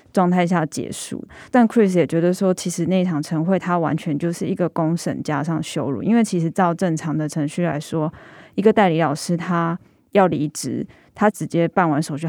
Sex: female